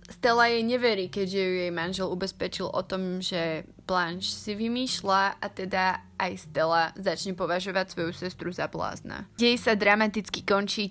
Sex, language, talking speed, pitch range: female, Slovak, 155 wpm, 170-200 Hz